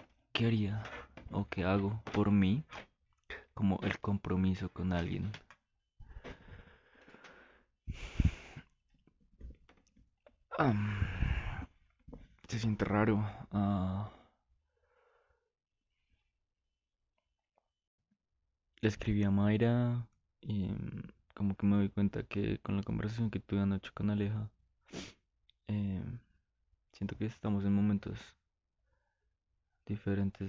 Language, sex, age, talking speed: Spanish, male, 20-39, 85 wpm